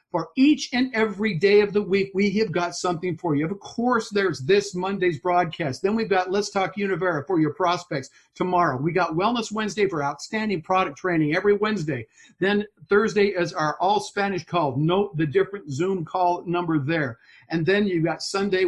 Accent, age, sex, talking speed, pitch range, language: American, 50-69, male, 185 wpm, 160-205 Hz, English